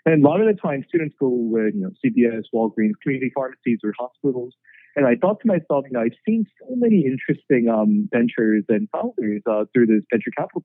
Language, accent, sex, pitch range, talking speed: English, American, male, 115-170 Hz, 215 wpm